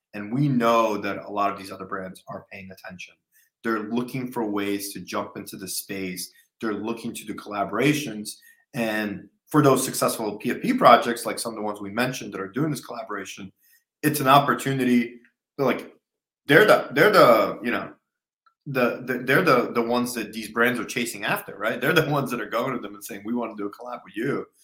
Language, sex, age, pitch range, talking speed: English, male, 30-49, 105-130 Hz, 210 wpm